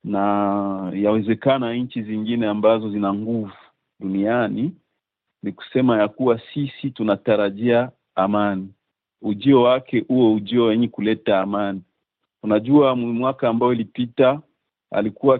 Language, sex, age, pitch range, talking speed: Swahili, male, 50-69, 110-135 Hz, 105 wpm